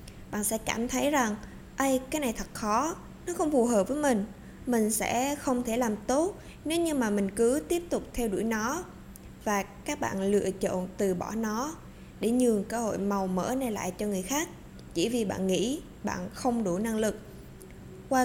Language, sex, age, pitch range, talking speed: Vietnamese, female, 20-39, 205-255 Hz, 200 wpm